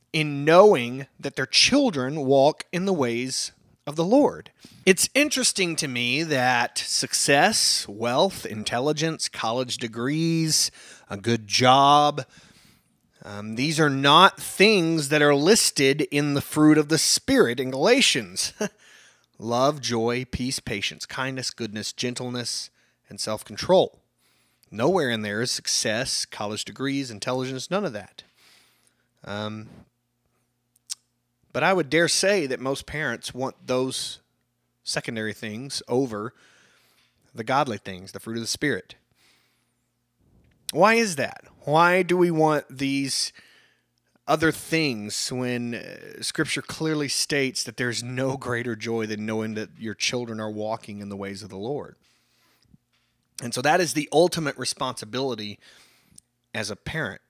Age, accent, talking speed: 30-49, American, 130 wpm